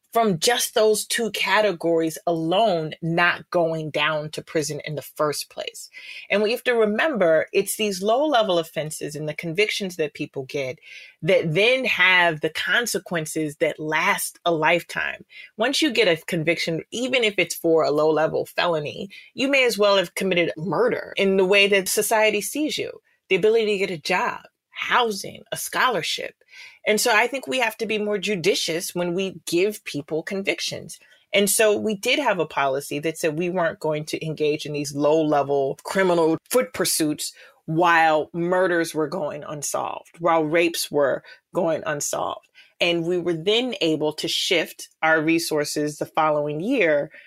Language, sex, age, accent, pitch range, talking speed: English, female, 30-49, American, 155-215 Hz, 170 wpm